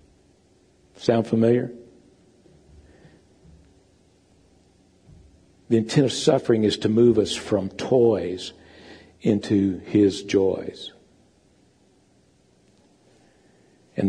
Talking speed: 70 wpm